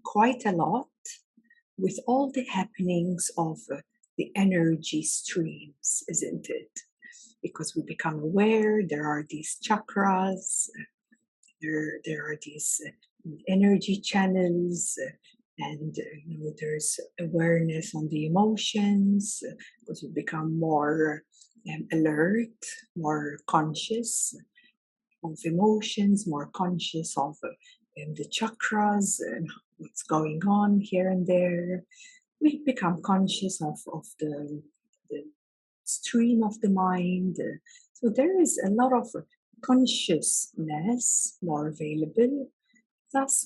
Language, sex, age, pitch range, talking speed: English, female, 60-79, 165-235 Hz, 115 wpm